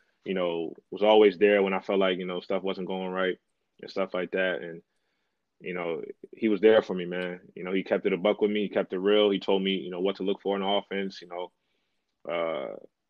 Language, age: English, 20-39